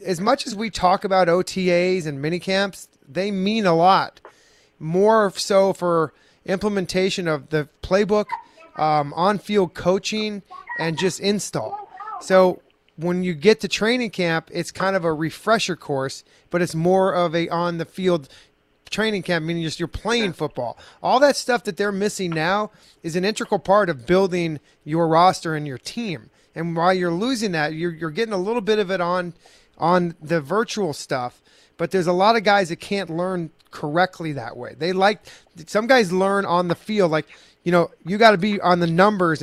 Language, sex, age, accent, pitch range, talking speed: English, male, 30-49, American, 170-205 Hz, 185 wpm